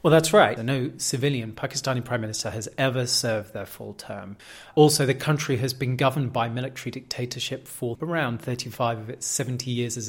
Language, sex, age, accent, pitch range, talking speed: English, male, 30-49, British, 120-150 Hz, 185 wpm